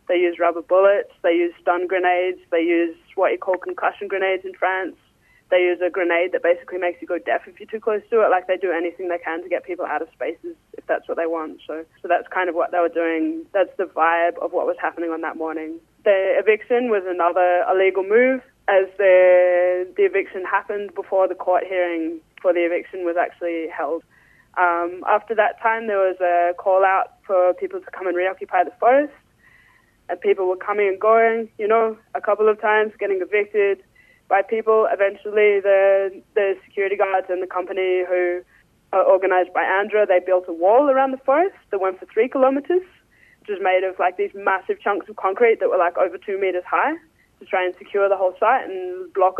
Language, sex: English, female